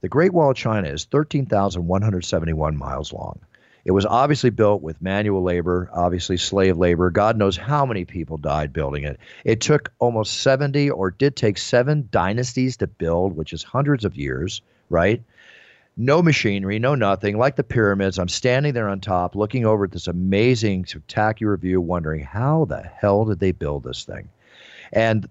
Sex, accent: male, American